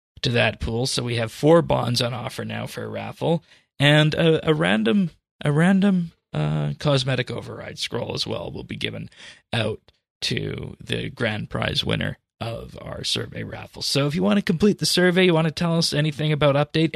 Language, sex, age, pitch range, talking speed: English, male, 20-39, 115-150 Hz, 195 wpm